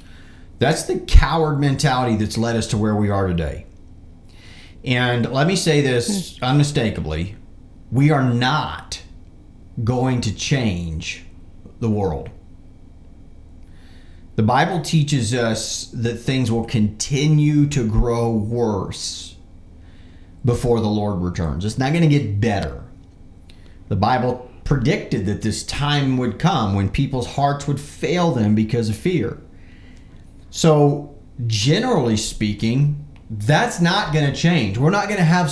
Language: English